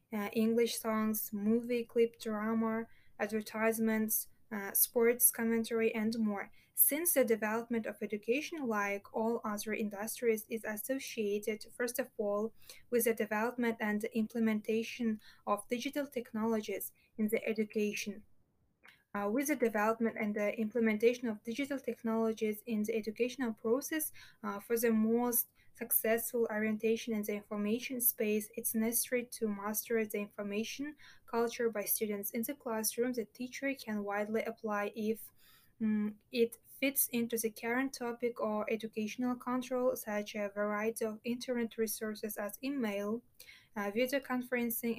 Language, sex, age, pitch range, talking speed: English, female, 10-29, 215-235 Hz, 135 wpm